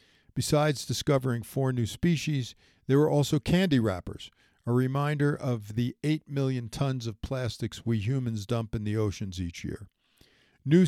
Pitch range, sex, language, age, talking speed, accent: 115-140 Hz, male, English, 50-69, 155 wpm, American